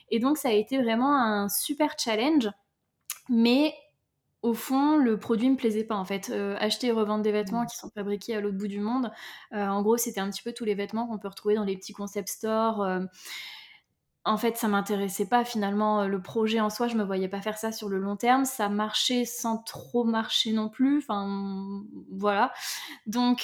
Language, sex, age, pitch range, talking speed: French, female, 20-39, 205-250 Hz, 220 wpm